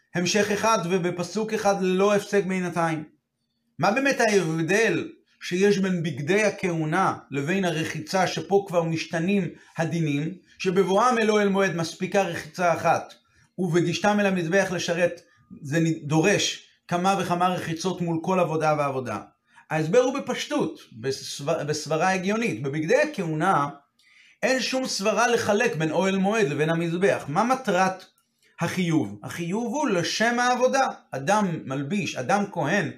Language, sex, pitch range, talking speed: Hebrew, male, 160-210 Hz, 125 wpm